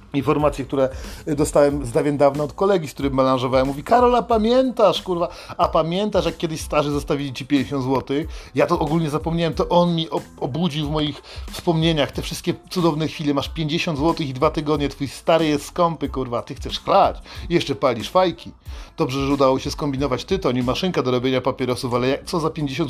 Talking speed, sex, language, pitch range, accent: 190 wpm, male, Polish, 140-165 Hz, native